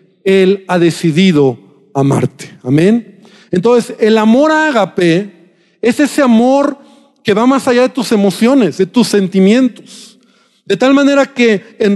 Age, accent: 50-69, Mexican